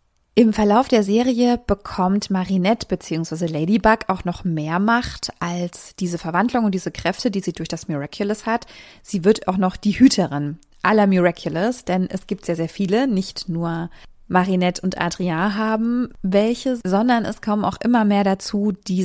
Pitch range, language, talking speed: 180-220 Hz, German, 165 wpm